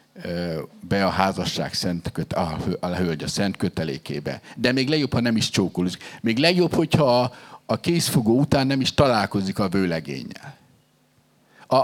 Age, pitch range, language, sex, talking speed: 50-69, 105-160 Hz, Hungarian, male, 145 wpm